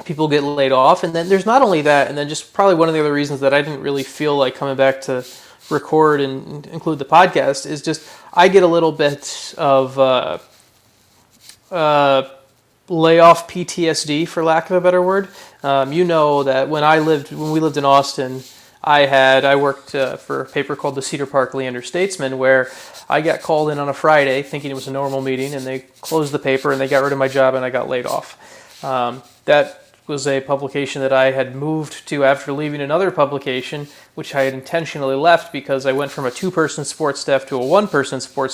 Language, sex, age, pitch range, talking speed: English, male, 30-49, 135-160 Hz, 215 wpm